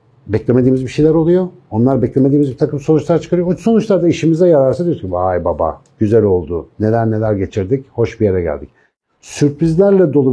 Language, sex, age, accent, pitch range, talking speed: Turkish, male, 60-79, native, 95-145 Hz, 170 wpm